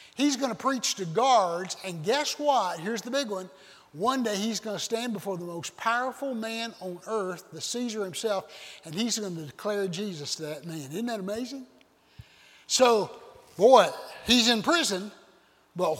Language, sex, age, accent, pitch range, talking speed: English, male, 60-79, American, 170-230 Hz, 175 wpm